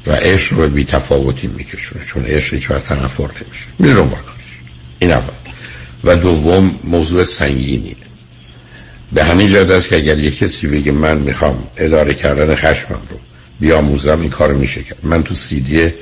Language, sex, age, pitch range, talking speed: Persian, male, 60-79, 65-85 Hz, 155 wpm